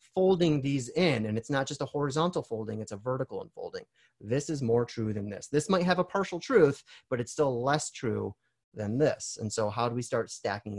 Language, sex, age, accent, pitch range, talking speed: English, male, 30-49, American, 115-150 Hz, 220 wpm